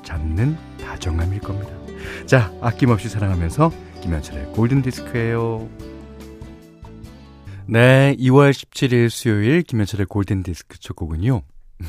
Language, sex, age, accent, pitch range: Korean, male, 40-59, native, 95-135 Hz